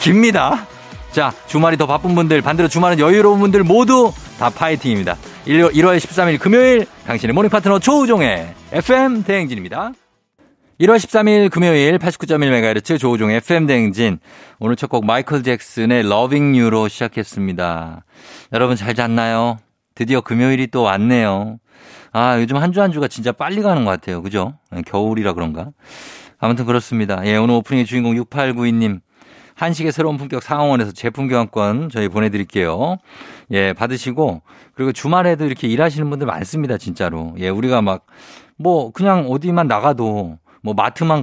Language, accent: Korean, native